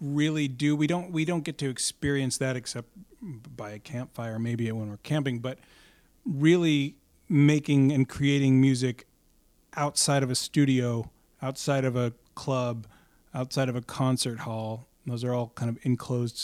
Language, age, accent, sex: English, 30-49, American, male